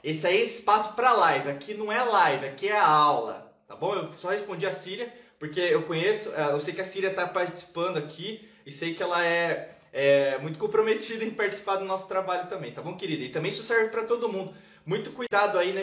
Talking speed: 230 wpm